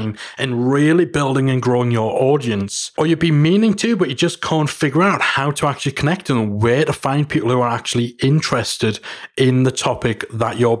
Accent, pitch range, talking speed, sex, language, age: British, 115-145 Hz, 200 wpm, male, English, 30-49